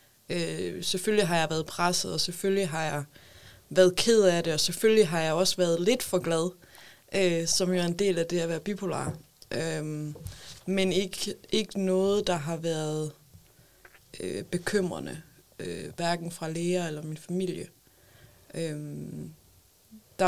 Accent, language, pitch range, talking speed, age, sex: native, Danish, 155-185 Hz, 140 wpm, 20-39, female